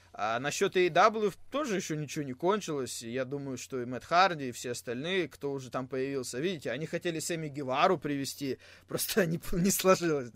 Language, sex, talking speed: Russian, male, 180 wpm